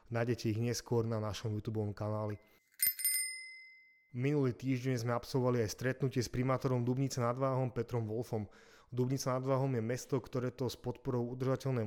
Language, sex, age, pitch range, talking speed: Slovak, male, 30-49, 115-130 Hz, 150 wpm